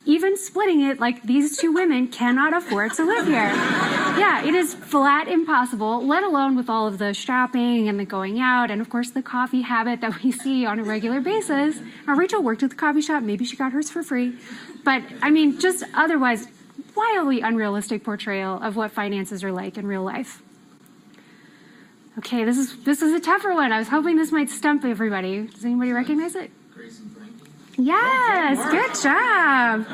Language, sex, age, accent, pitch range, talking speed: English, female, 30-49, American, 225-305 Hz, 185 wpm